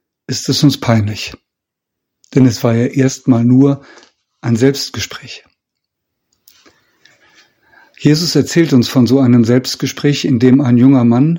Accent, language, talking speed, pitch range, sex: German, German, 125 wpm, 120-140 Hz, male